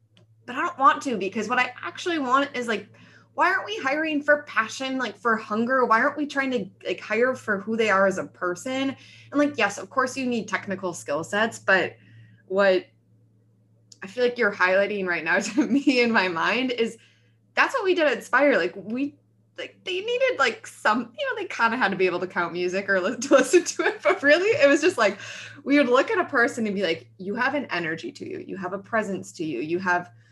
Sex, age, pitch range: female, 20-39, 160-250 Hz